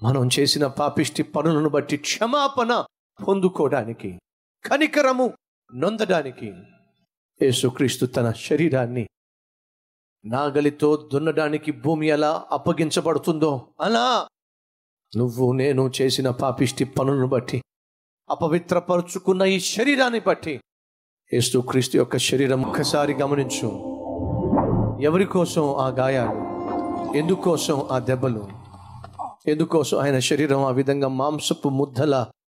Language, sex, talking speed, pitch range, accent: Telugu, male, 85 wpm, 130-160 Hz, native